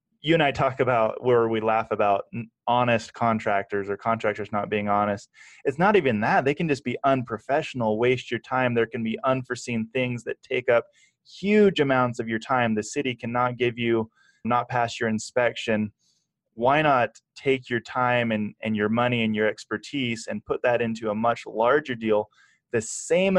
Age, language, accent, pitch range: 20-39, English, American, 110-125 Hz